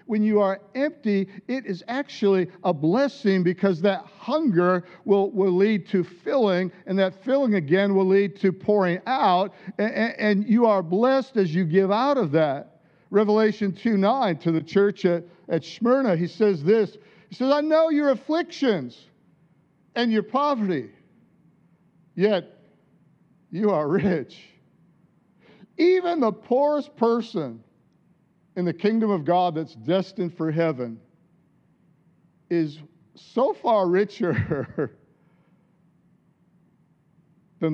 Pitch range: 165-205 Hz